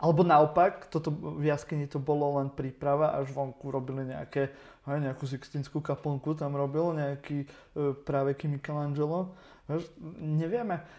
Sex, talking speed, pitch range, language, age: male, 120 wpm, 140-155 Hz, Slovak, 30-49